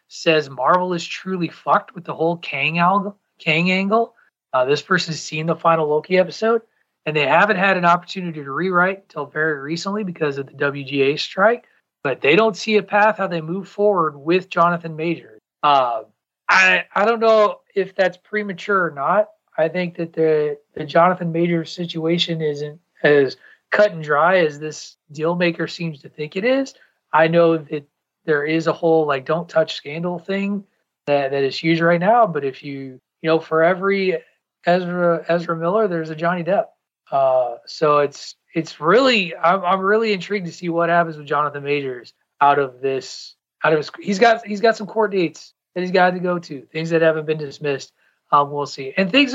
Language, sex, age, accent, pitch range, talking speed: English, male, 30-49, American, 150-190 Hz, 190 wpm